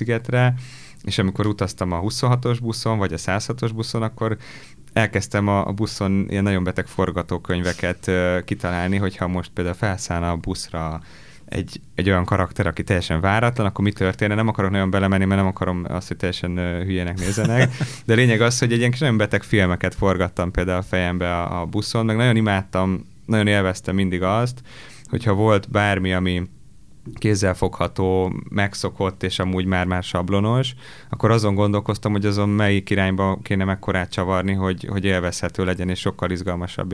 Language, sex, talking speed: English, male, 160 wpm